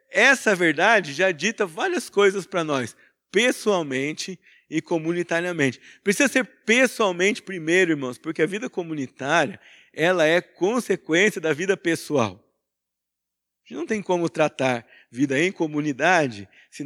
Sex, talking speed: male, 130 wpm